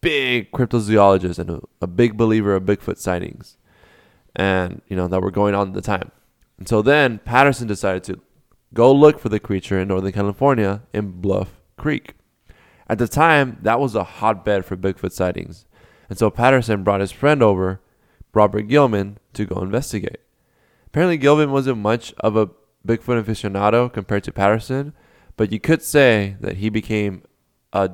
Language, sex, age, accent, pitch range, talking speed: English, male, 20-39, American, 95-120 Hz, 165 wpm